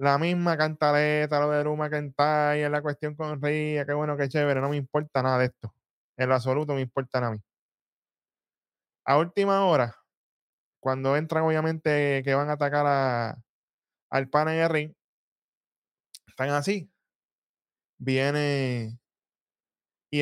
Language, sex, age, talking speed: Spanish, male, 10-29, 150 wpm